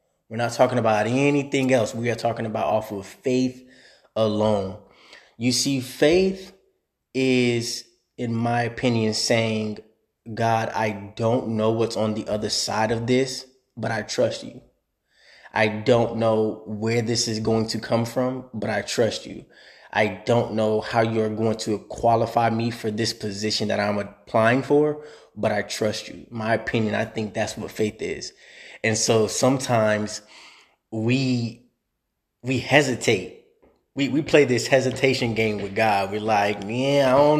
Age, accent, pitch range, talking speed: 20-39, American, 110-130 Hz, 155 wpm